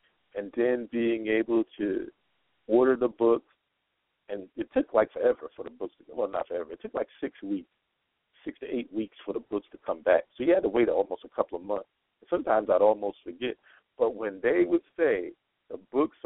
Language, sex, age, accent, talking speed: English, male, 50-69, American, 210 wpm